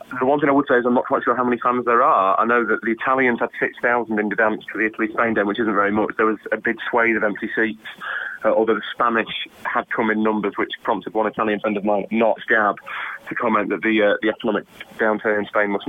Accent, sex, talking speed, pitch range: British, male, 265 wpm, 105-120 Hz